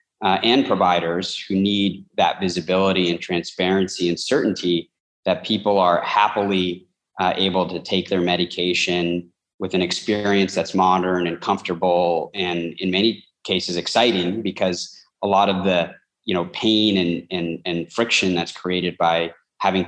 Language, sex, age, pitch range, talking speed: English, male, 20-39, 85-95 Hz, 140 wpm